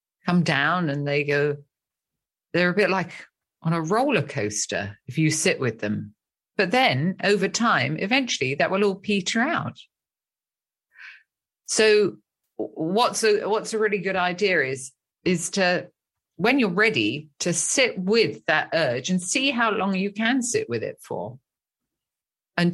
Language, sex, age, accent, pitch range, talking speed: English, female, 50-69, British, 175-240 Hz, 155 wpm